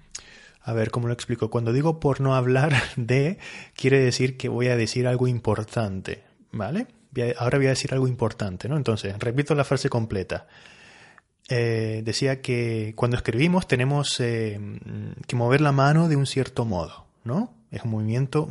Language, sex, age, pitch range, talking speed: Spanish, male, 30-49, 110-140 Hz, 165 wpm